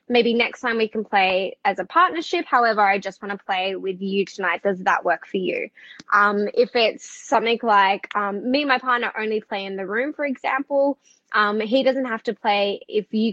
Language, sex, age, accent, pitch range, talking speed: English, female, 10-29, Australian, 200-245 Hz, 215 wpm